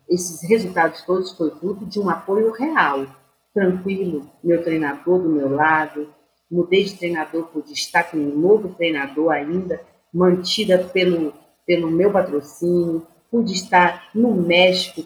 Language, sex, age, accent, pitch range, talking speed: Portuguese, female, 50-69, Brazilian, 160-200 Hz, 135 wpm